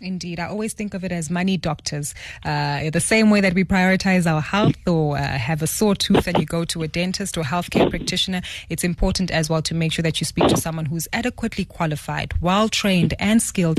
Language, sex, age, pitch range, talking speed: English, female, 20-39, 160-200 Hz, 220 wpm